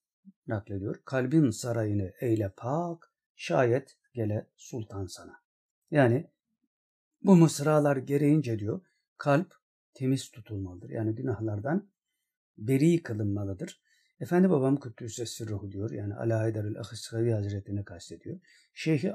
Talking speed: 105 wpm